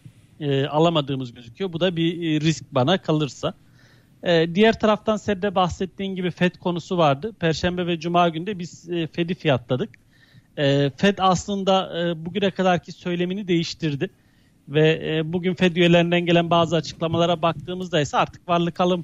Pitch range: 155-185 Hz